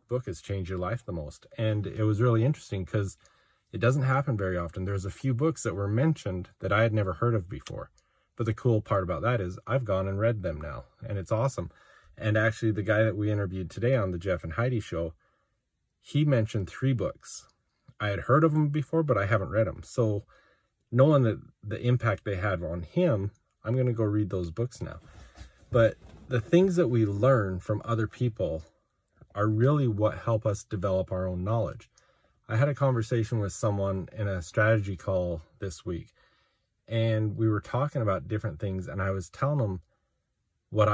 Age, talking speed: 30-49, 200 wpm